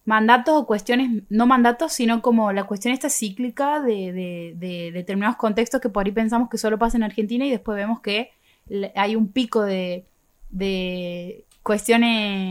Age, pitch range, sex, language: 20-39, 195-240 Hz, female, Spanish